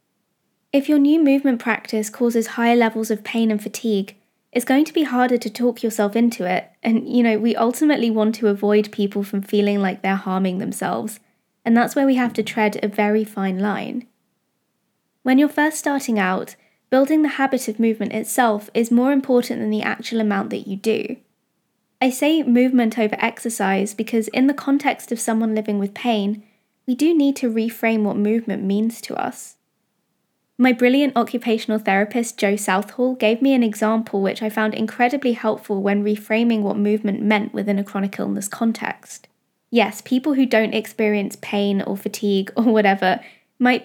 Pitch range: 210-245 Hz